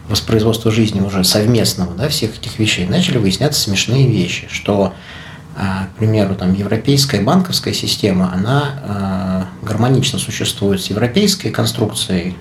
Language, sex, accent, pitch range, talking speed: Russian, male, native, 100-135 Hz, 120 wpm